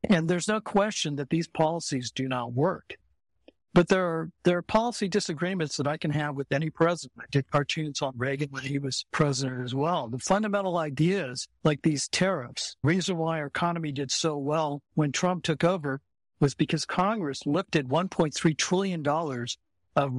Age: 60-79